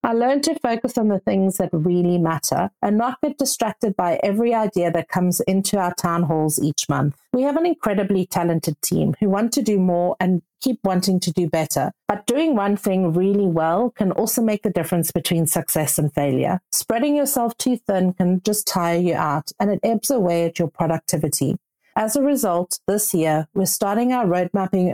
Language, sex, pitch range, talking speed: English, female, 170-220 Hz, 195 wpm